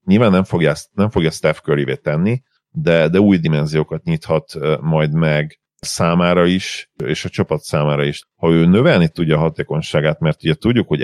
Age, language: 40-59, Hungarian